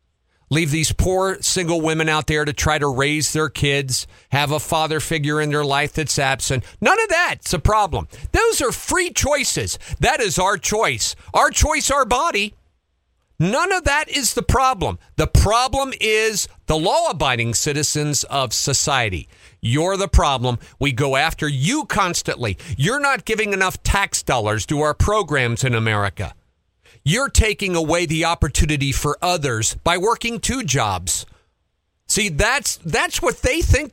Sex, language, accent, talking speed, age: male, English, American, 155 wpm, 50-69